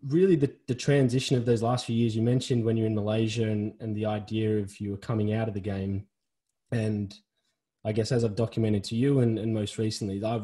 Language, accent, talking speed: English, Australian, 230 wpm